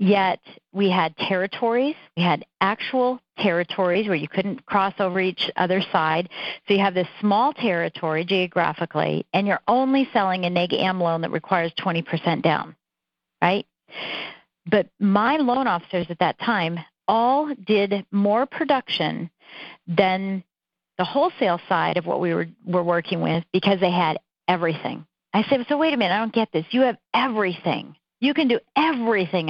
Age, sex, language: 50-69, female, English